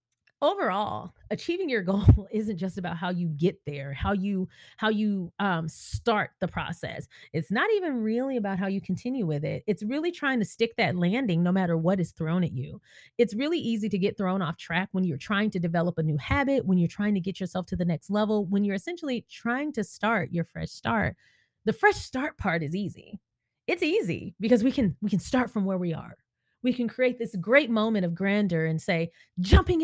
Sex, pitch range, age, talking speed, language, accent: female, 170-235 Hz, 30-49, 215 wpm, English, American